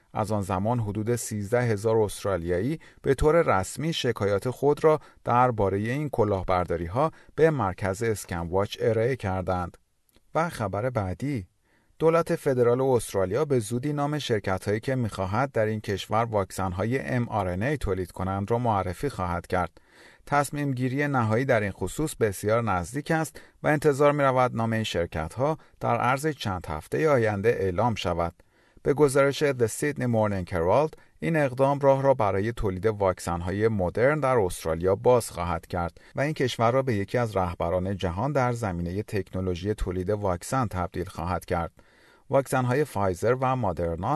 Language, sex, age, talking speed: Persian, male, 30-49, 150 wpm